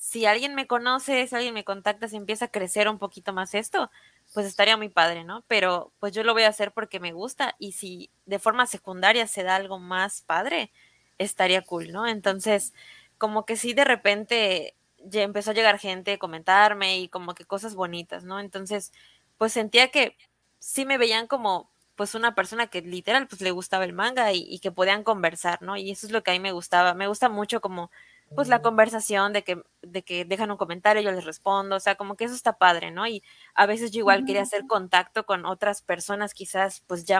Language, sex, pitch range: Spanish, female, 190-225 Hz